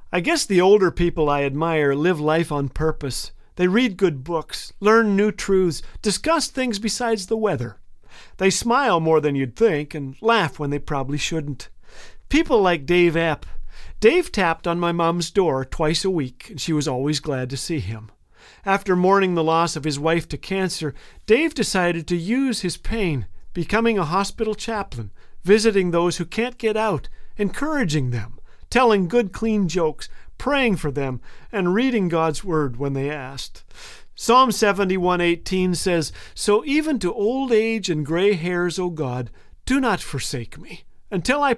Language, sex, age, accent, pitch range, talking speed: English, male, 50-69, American, 150-205 Hz, 170 wpm